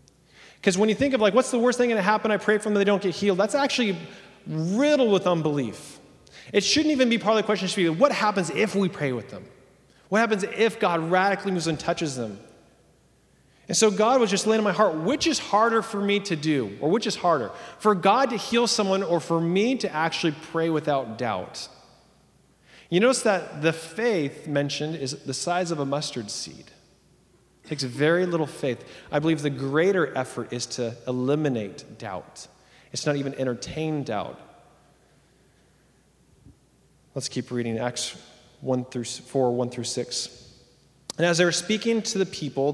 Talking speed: 190 wpm